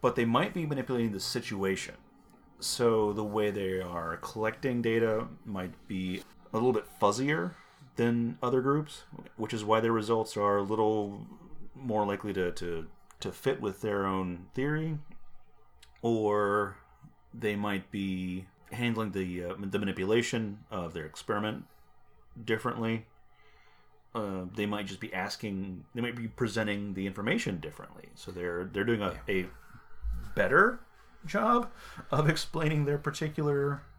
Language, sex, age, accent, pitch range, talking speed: English, male, 30-49, American, 100-125 Hz, 140 wpm